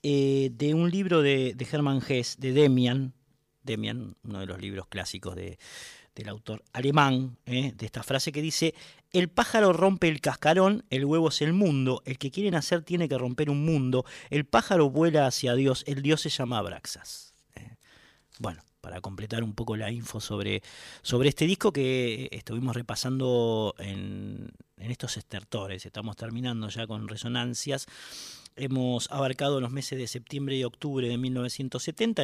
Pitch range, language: 105-140 Hz, Spanish